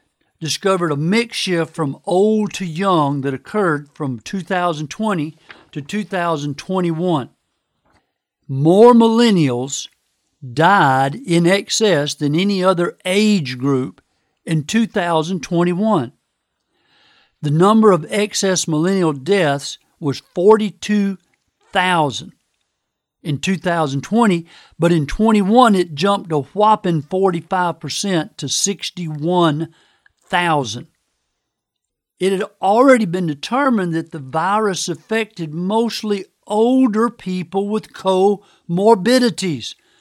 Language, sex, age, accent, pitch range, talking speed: English, male, 50-69, American, 160-210 Hz, 90 wpm